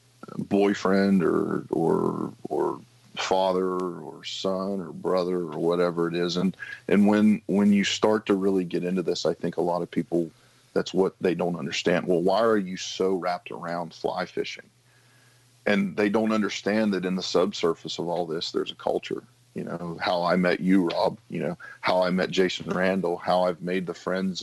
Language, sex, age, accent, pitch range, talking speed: English, male, 40-59, American, 90-105 Hz, 190 wpm